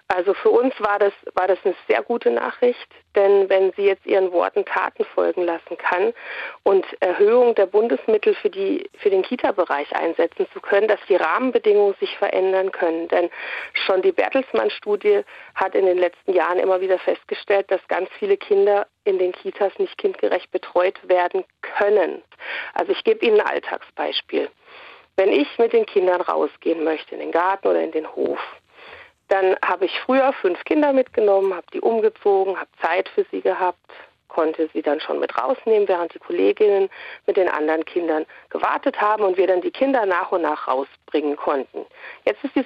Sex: female